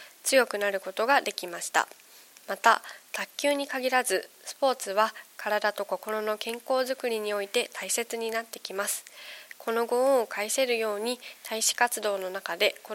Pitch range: 200-250 Hz